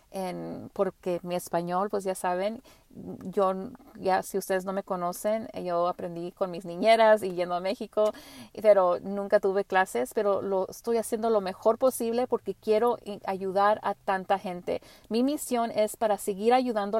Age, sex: 40-59, female